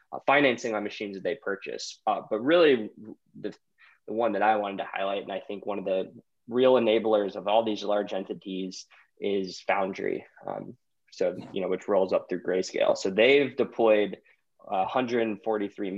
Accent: American